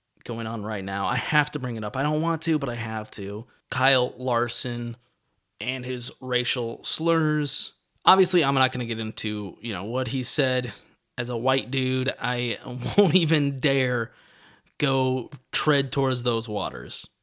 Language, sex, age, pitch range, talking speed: English, male, 20-39, 115-140 Hz, 170 wpm